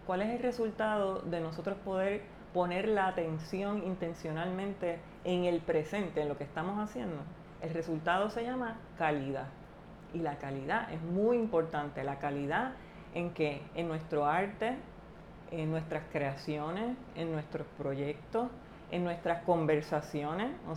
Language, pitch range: Spanish, 160-210 Hz